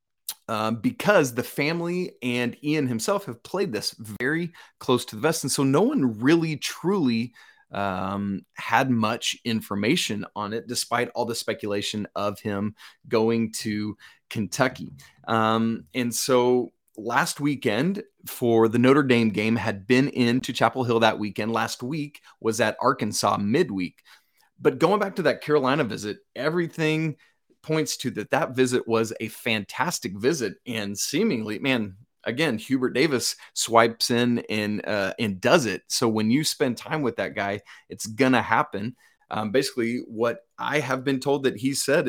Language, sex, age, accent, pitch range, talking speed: English, male, 30-49, American, 110-135 Hz, 155 wpm